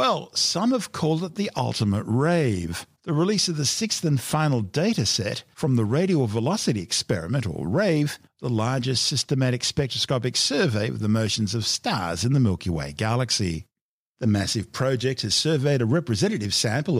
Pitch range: 105-145 Hz